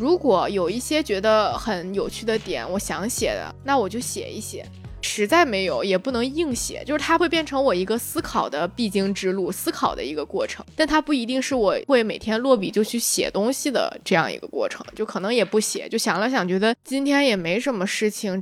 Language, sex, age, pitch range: Chinese, female, 20-39, 195-265 Hz